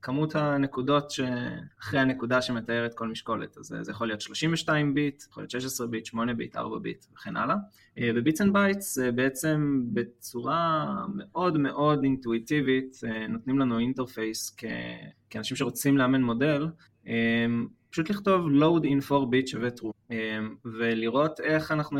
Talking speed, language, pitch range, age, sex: 135 wpm, Hebrew, 115-145 Hz, 20-39, male